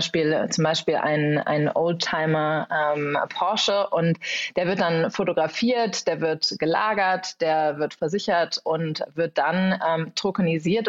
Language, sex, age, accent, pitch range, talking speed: German, female, 20-39, German, 155-185 Hz, 120 wpm